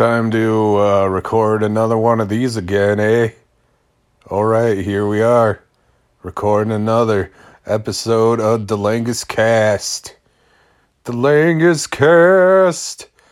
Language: English